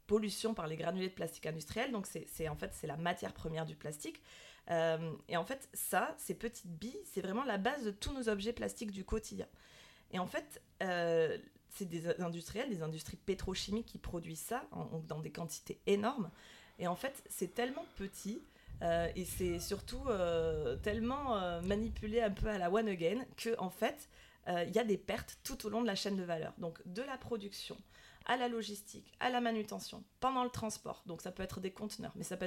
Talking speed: 215 wpm